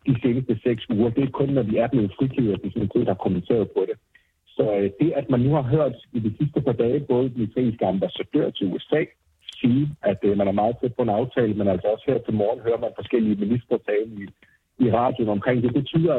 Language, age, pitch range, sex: Danish, 60-79, 110-135 Hz, male